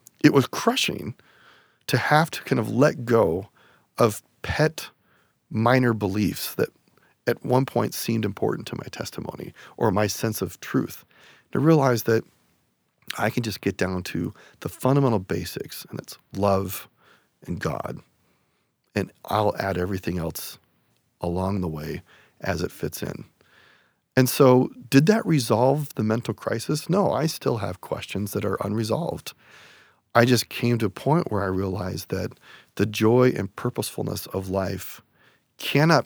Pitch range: 95-120 Hz